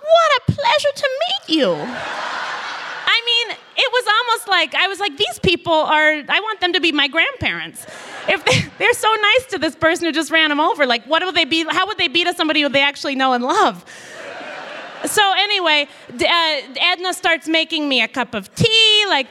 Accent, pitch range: American, 285-380 Hz